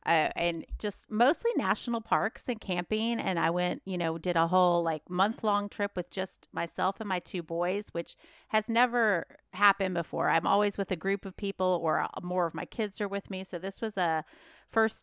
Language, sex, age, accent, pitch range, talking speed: English, female, 30-49, American, 165-215 Hz, 205 wpm